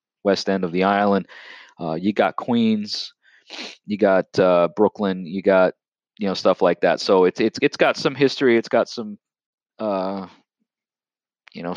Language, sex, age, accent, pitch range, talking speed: English, male, 30-49, American, 95-115 Hz, 170 wpm